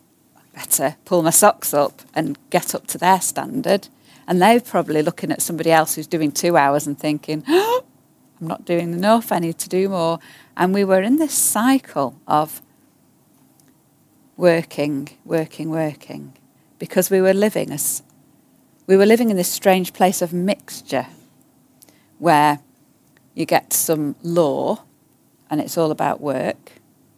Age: 40-59